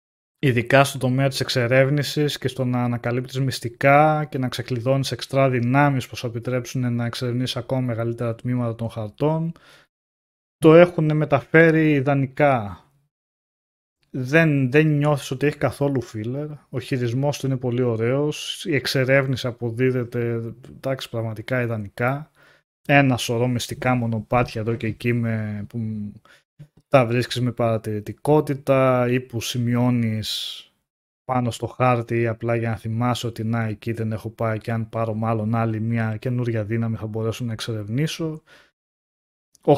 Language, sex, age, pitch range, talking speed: Greek, male, 20-39, 110-135 Hz, 135 wpm